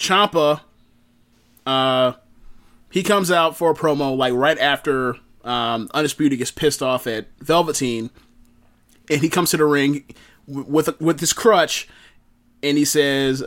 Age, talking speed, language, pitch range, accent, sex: 30-49, 145 wpm, English, 125-180 Hz, American, male